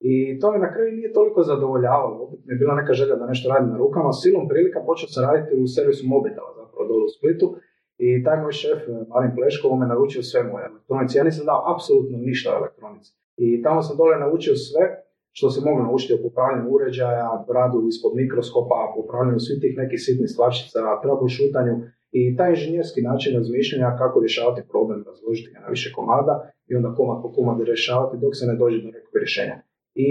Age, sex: 40-59, male